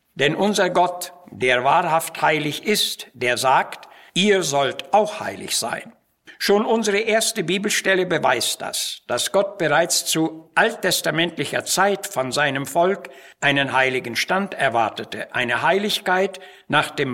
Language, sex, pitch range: German, male, 140-185 Hz